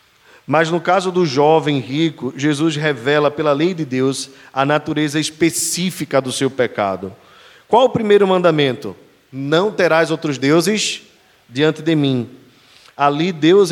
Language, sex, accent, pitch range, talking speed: Portuguese, male, Brazilian, 130-175 Hz, 135 wpm